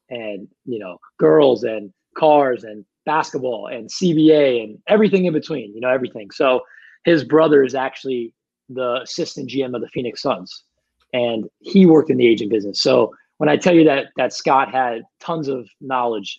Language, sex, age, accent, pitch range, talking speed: English, male, 20-39, American, 125-160 Hz, 175 wpm